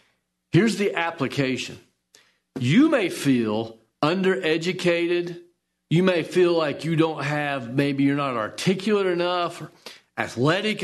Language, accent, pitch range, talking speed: English, American, 120-200 Hz, 115 wpm